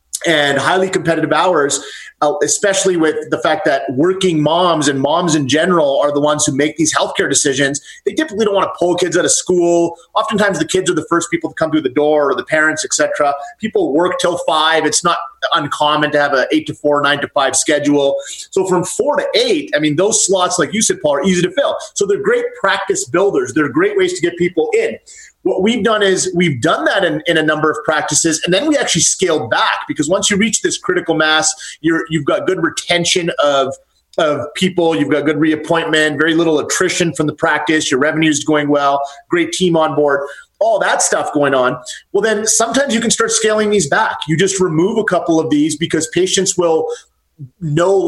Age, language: 30-49, English